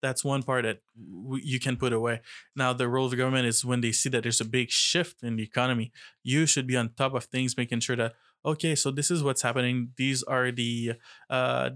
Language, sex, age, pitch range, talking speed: English, male, 20-39, 125-135 Hz, 235 wpm